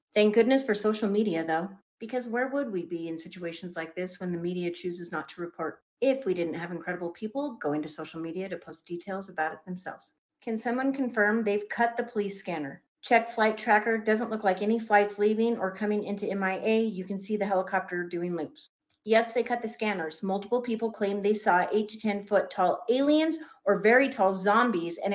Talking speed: 210 wpm